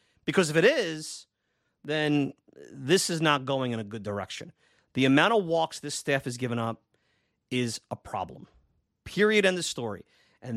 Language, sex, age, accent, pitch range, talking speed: English, male, 30-49, American, 120-155 Hz, 170 wpm